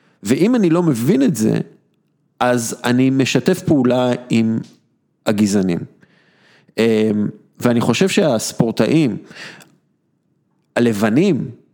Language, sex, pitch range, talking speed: Hebrew, male, 110-140 Hz, 80 wpm